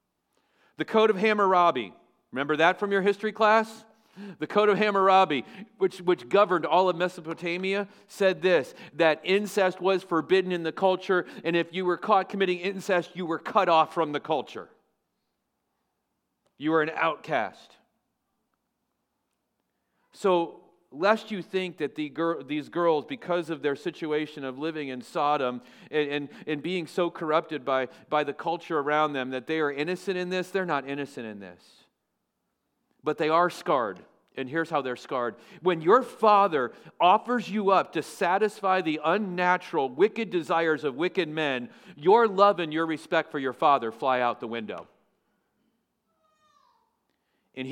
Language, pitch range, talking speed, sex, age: English, 155-205 Hz, 155 wpm, male, 40-59